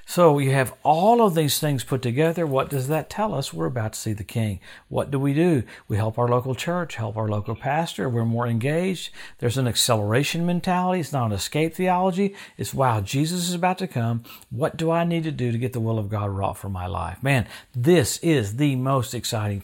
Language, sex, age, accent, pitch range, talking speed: English, male, 50-69, American, 110-150 Hz, 225 wpm